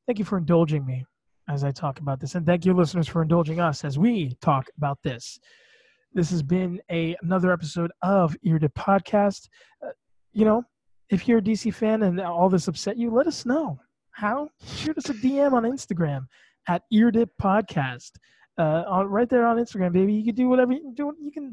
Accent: American